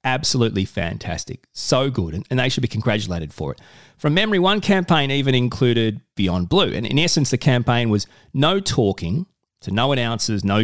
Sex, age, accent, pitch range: male, 30-49, Australian, 110-155 Hz